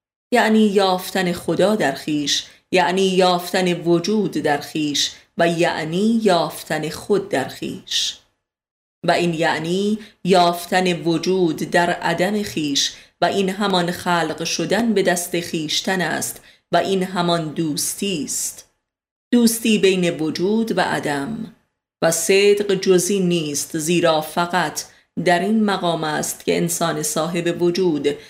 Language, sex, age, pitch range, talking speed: Persian, female, 30-49, 165-195 Hz, 120 wpm